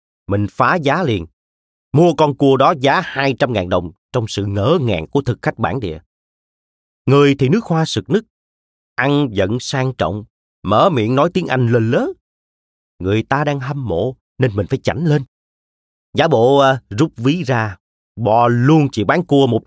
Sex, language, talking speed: male, Vietnamese, 185 wpm